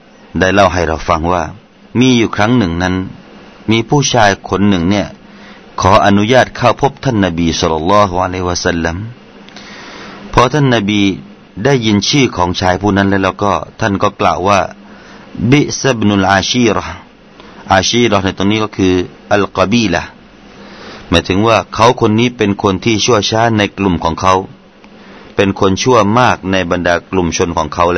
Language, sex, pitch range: Thai, male, 90-115 Hz